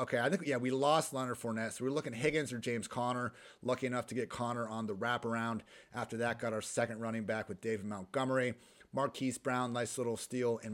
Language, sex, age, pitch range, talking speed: English, male, 30-49, 115-140 Hz, 225 wpm